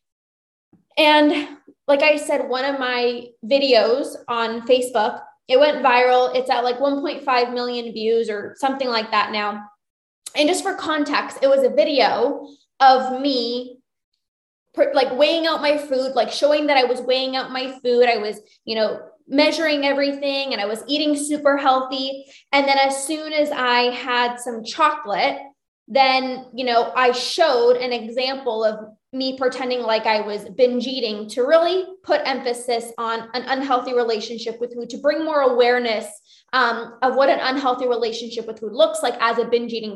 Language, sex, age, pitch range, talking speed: English, female, 20-39, 245-290 Hz, 170 wpm